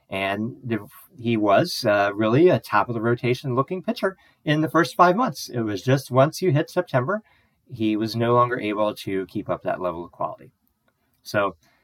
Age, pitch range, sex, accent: 30-49, 105-130 Hz, male, American